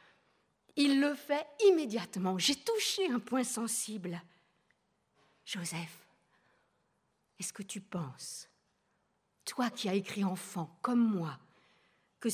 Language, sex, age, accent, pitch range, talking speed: French, female, 50-69, French, 175-250 Hz, 105 wpm